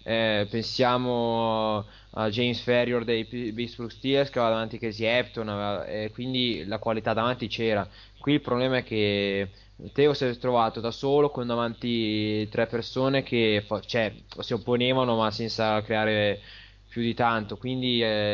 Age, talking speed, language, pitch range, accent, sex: 20-39, 160 wpm, Italian, 105-120 Hz, native, male